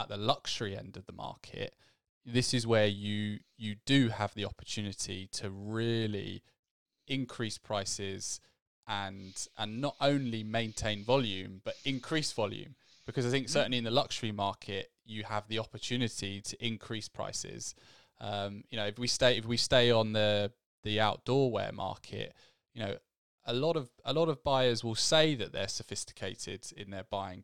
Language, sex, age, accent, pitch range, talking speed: English, male, 20-39, British, 100-125 Hz, 165 wpm